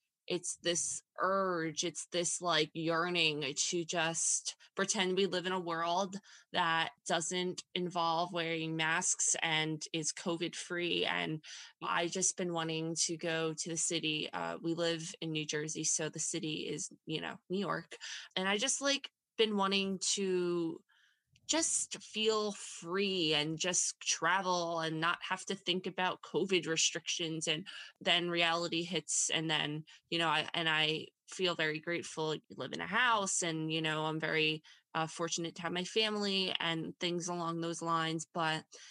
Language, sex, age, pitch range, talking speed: English, female, 20-39, 160-185 Hz, 160 wpm